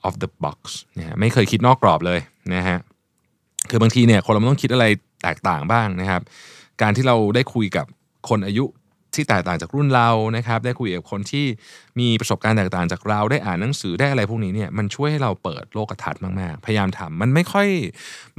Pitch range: 100-135 Hz